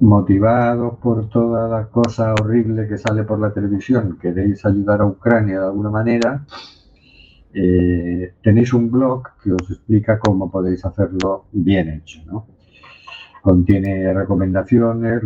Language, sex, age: Spanish, male, 50-69